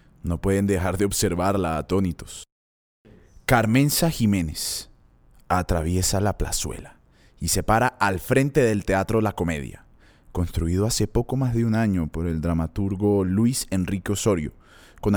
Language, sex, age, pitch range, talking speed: Spanish, male, 20-39, 95-125 Hz, 135 wpm